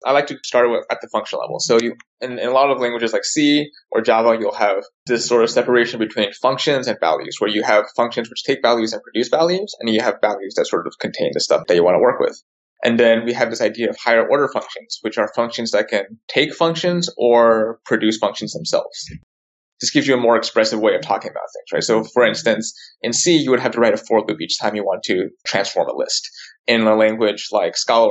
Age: 20-39